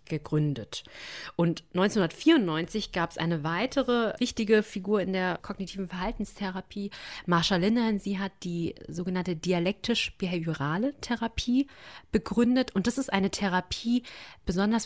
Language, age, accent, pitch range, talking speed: German, 30-49, German, 170-215 Hz, 115 wpm